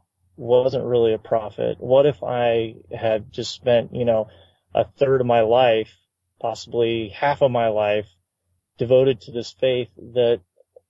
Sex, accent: male, American